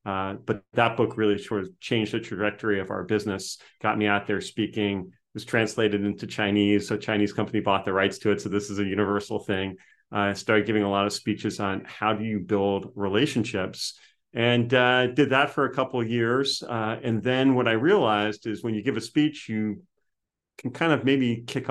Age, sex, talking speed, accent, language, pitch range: 40-59, male, 210 wpm, American, English, 100-115 Hz